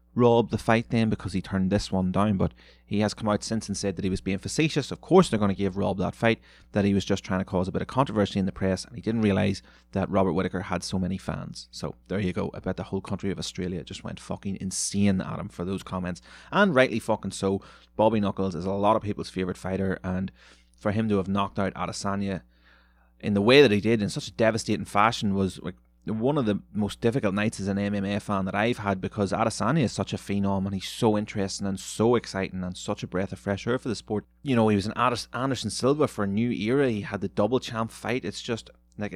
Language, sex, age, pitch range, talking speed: English, male, 30-49, 95-110 Hz, 255 wpm